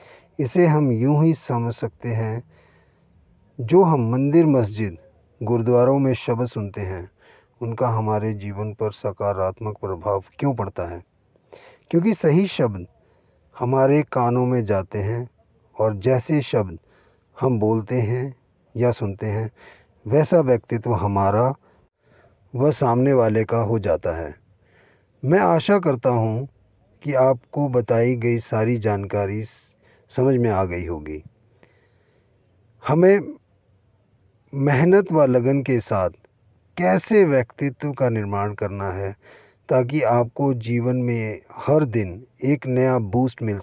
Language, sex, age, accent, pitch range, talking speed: Hindi, male, 40-59, native, 105-130 Hz, 120 wpm